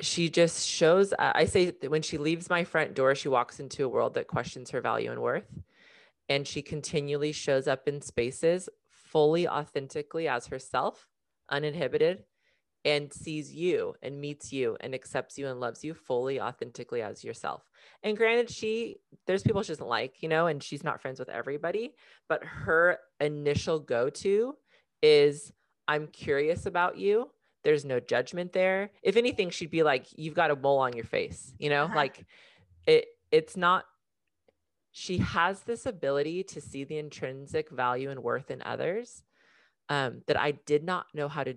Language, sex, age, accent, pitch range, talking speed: English, female, 30-49, American, 135-185 Hz, 175 wpm